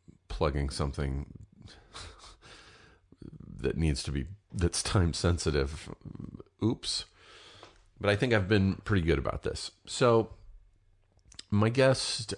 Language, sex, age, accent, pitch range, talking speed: English, male, 40-59, American, 75-95 Hz, 105 wpm